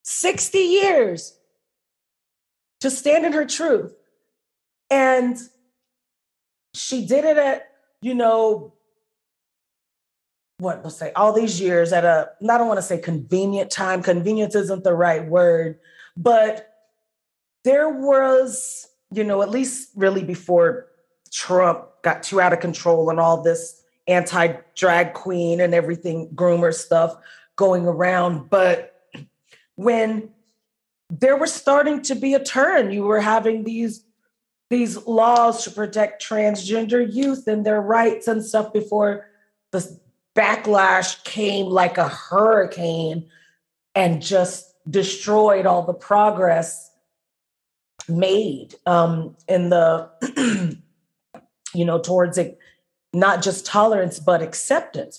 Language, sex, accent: English, female, American